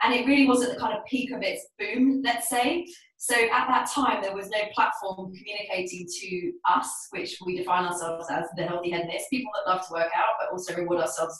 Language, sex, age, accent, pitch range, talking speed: English, female, 20-39, British, 185-265 Hz, 225 wpm